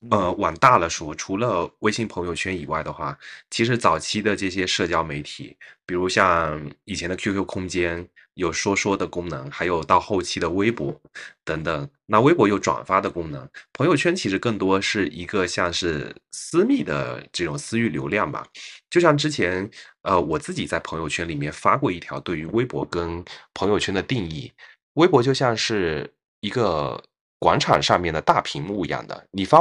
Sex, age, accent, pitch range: male, 20-39, native, 85-120 Hz